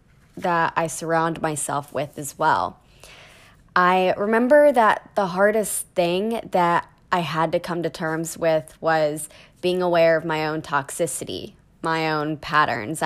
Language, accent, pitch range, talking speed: English, American, 160-195 Hz, 140 wpm